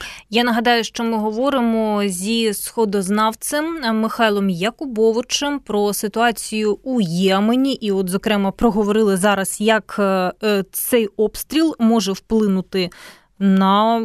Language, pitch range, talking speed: Ukrainian, 200-245 Hz, 105 wpm